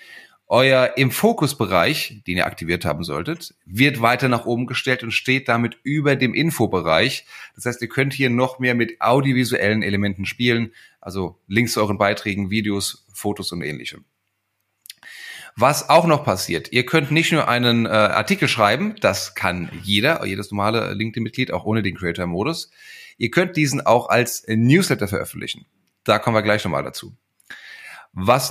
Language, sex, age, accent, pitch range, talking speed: German, male, 10-29, German, 100-130 Hz, 155 wpm